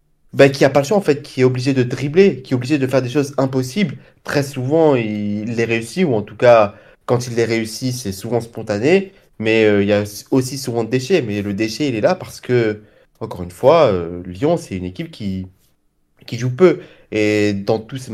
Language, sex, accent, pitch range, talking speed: French, male, French, 110-145 Hz, 230 wpm